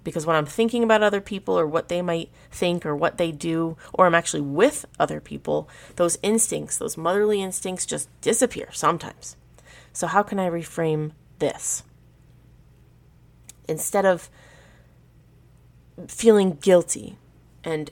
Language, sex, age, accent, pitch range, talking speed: English, female, 30-49, American, 150-205 Hz, 135 wpm